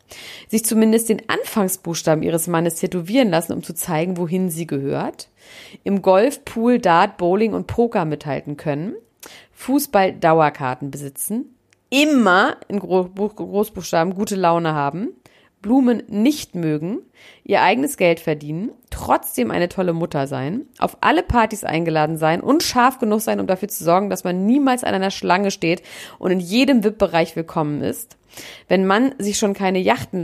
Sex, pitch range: female, 165-220 Hz